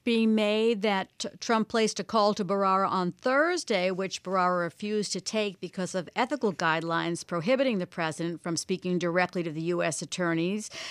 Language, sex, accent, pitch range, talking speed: English, female, American, 180-225 Hz, 170 wpm